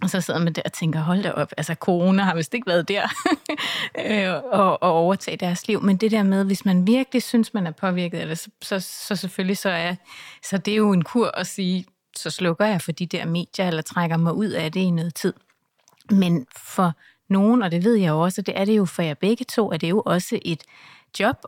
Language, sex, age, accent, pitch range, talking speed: Danish, female, 30-49, native, 175-215 Hz, 245 wpm